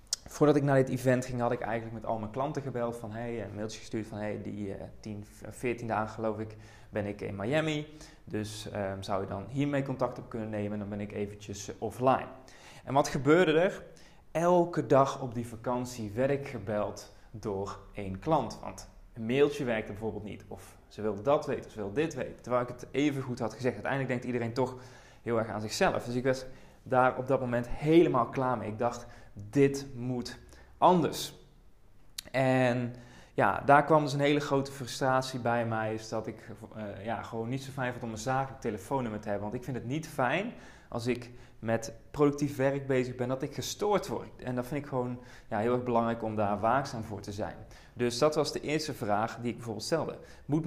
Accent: Dutch